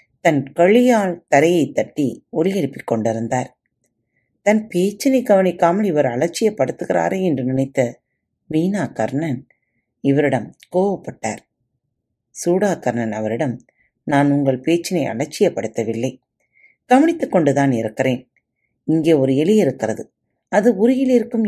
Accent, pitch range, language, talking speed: native, 130-195 Hz, Tamil, 90 wpm